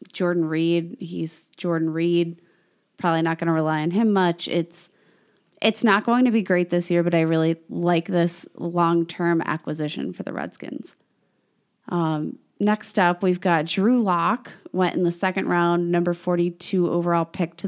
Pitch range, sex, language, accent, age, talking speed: 165-185 Hz, female, English, American, 20-39, 165 wpm